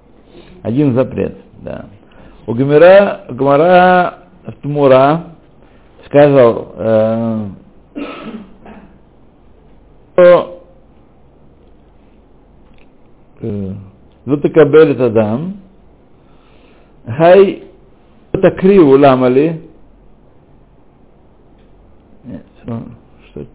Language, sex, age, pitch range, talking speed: Russian, male, 60-79, 110-150 Hz, 50 wpm